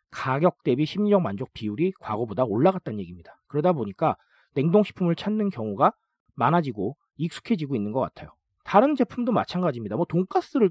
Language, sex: Korean, male